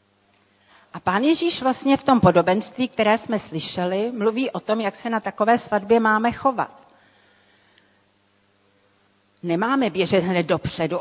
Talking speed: 130 wpm